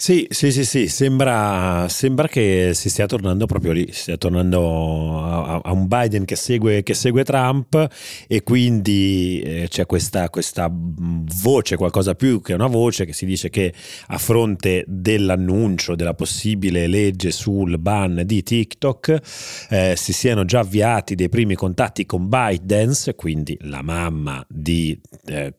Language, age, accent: Italian, 30-49, native